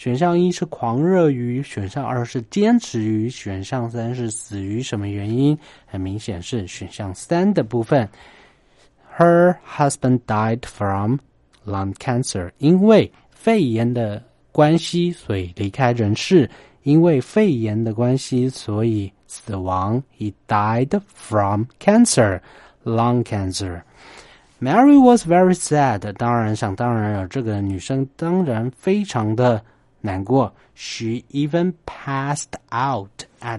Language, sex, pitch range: Chinese, male, 105-150 Hz